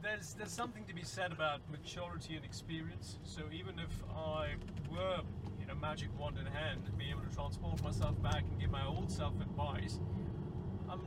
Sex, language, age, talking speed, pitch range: male, English, 40-59, 195 wpm, 115-155 Hz